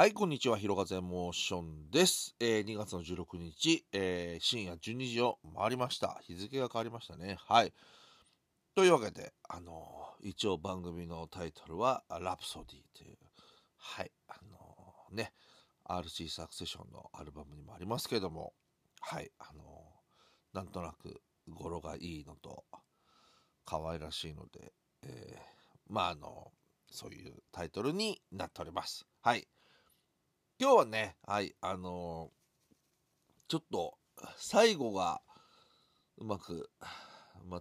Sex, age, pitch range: male, 40-59, 85-120 Hz